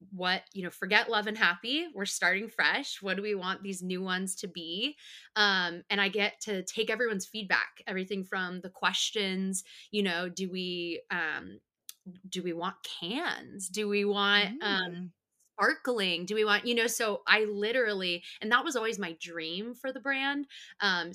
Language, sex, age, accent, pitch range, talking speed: English, female, 20-39, American, 170-210 Hz, 180 wpm